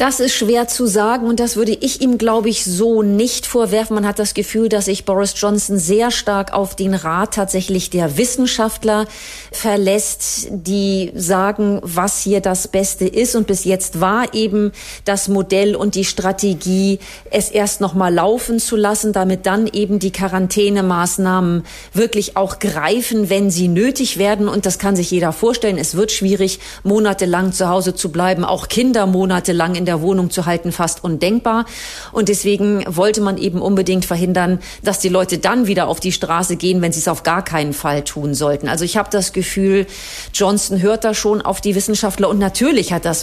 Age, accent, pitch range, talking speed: 40-59, German, 180-210 Hz, 185 wpm